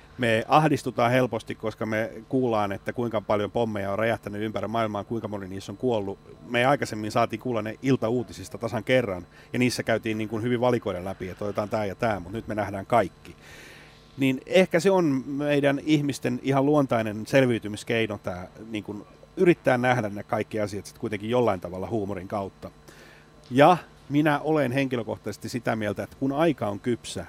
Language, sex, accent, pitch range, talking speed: Finnish, male, native, 100-125 Hz, 170 wpm